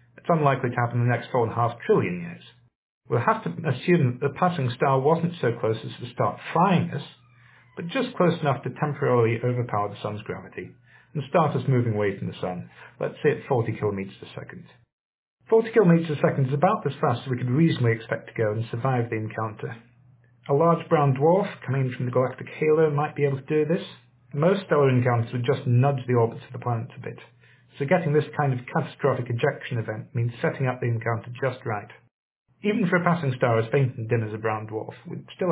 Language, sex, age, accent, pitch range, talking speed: English, male, 40-59, British, 120-155 Hz, 220 wpm